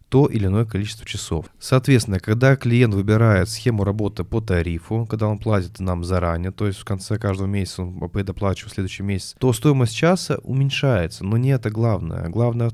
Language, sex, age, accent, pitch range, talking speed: Russian, male, 20-39, native, 95-115 Hz, 175 wpm